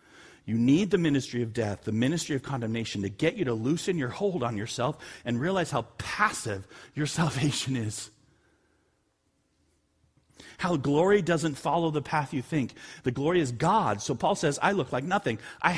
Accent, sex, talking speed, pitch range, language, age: American, male, 175 wpm, 120-165 Hz, English, 40-59